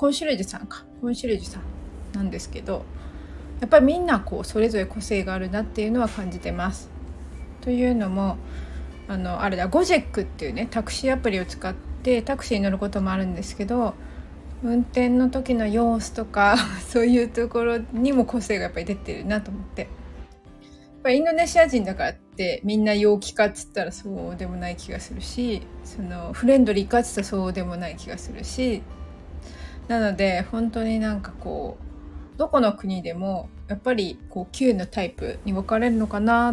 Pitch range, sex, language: 180-235 Hz, female, Japanese